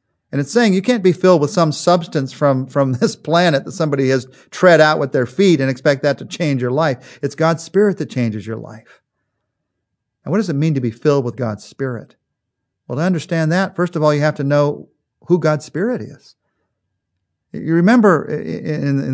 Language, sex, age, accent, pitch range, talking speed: English, male, 40-59, American, 130-175 Hz, 205 wpm